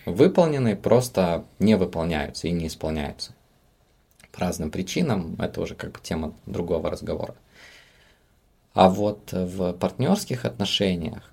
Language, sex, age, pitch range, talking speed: Russian, male, 20-39, 85-100 Hz, 115 wpm